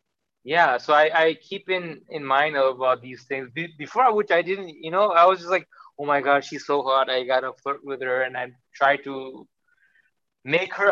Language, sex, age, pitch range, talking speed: English, male, 20-39, 130-165 Hz, 220 wpm